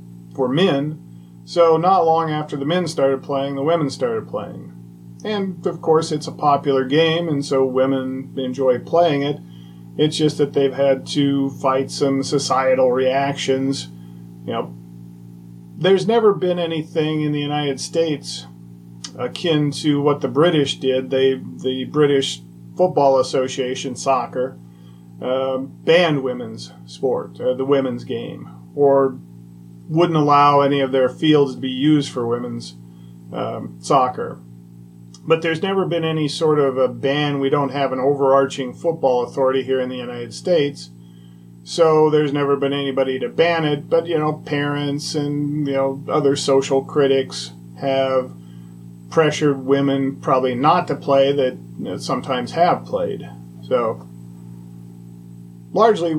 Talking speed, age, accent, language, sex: 140 wpm, 40-59, American, English, male